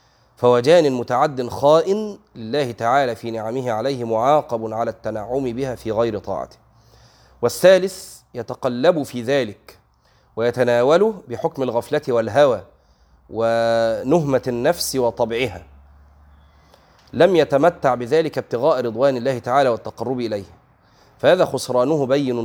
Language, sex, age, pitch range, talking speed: Arabic, male, 30-49, 110-140 Hz, 100 wpm